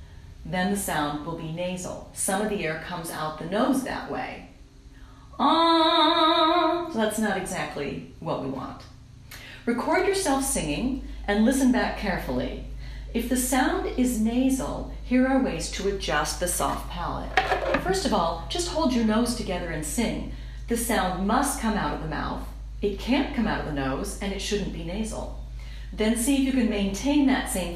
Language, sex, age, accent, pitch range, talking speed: English, female, 40-59, American, 175-265 Hz, 175 wpm